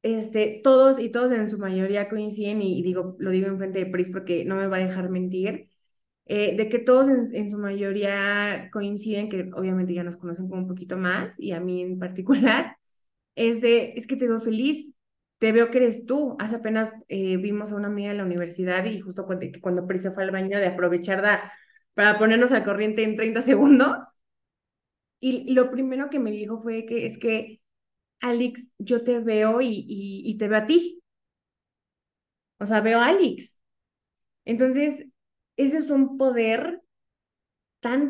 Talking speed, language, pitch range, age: 190 wpm, Spanish, 195-235 Hz, 20-39